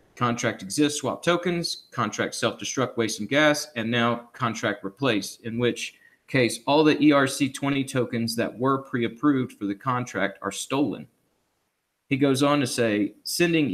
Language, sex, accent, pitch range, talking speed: English, male, American, 115-135 Hz, 150 wpm